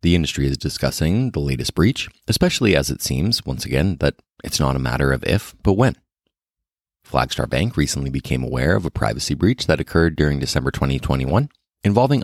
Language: English